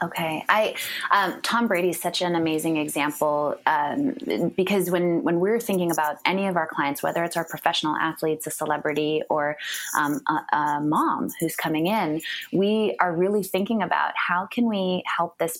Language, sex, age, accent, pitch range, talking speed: English, female, 20-39, American, 155-205 Hz, 175 wpm